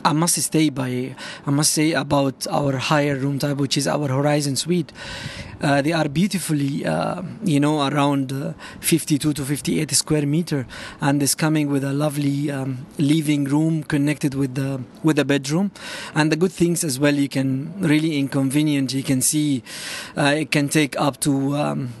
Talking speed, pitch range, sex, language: 180 wpm, 140-160 Hz, male, French